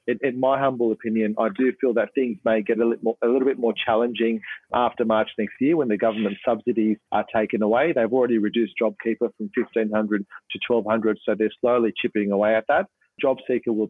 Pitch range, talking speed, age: 110-130 Hz, 205 wpm, 30-49